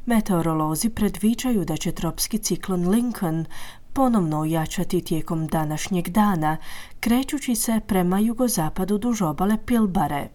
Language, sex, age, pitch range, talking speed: Croatian, female, 30-49, 170-225 Hz, 110 wpm